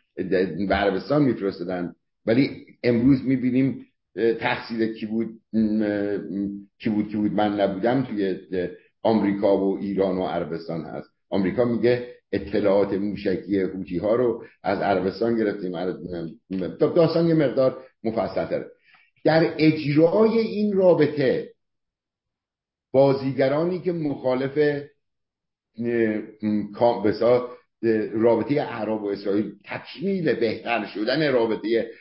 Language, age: Persian, 50-69